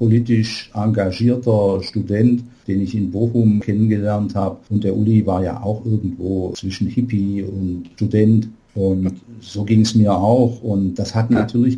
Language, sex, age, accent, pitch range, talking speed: German, male, 50-69, German, 100-120 Hz, 155 wpm